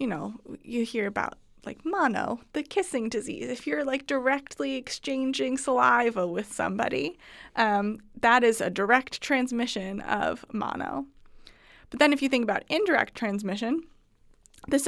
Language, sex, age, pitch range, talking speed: English, female, 20-39, 205-260 Hz, 140 wpm